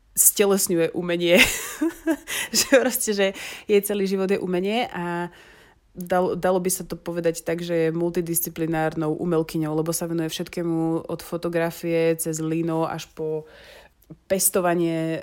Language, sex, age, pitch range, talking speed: Slovak, female, 20-39, 165-180 Hz, 130 wpm